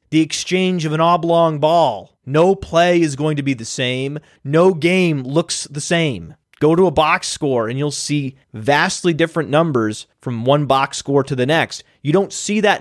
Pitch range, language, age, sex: 135-175 Hz, English, 30-49, male